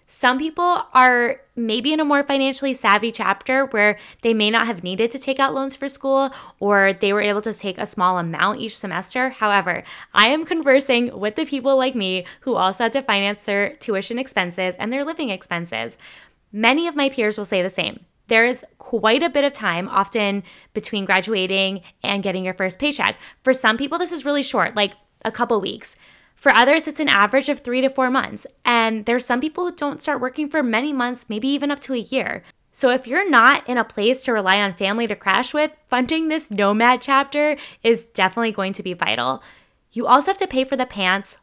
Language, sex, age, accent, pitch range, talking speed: English, female, 10-29, American, 200-270 Hz, 215 wpm